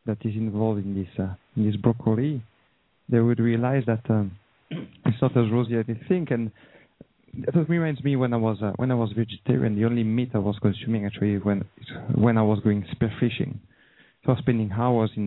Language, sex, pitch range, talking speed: English, male, 110-130 Hz, 210 wpm